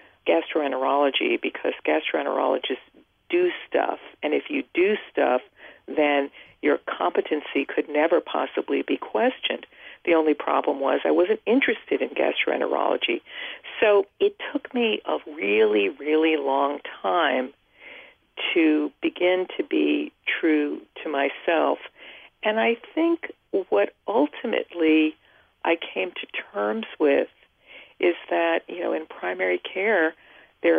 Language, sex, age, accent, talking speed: English, female, 50-69, American, 120 wpm